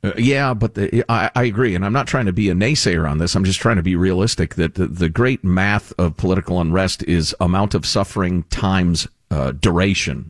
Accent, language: American, English